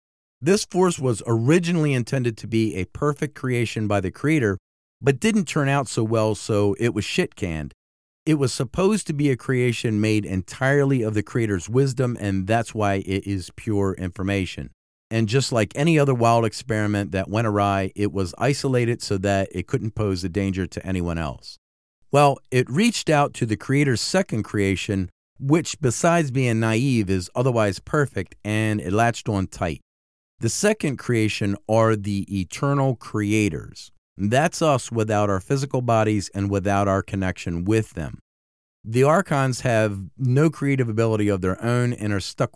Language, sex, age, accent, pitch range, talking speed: English, male, 40-59, American, 100-130 Hz, 165 wpm